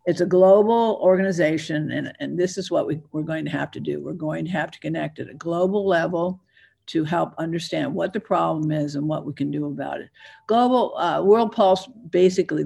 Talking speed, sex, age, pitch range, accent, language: 215 wpm, female, 60-79, 150-180 Hz, American, English